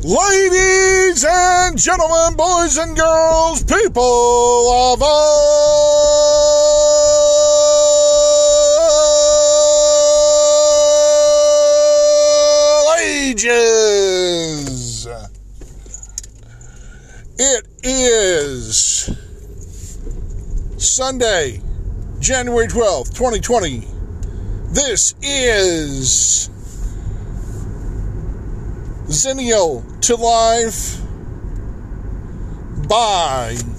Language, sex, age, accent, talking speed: English, male, 50-69, American, 40 wpm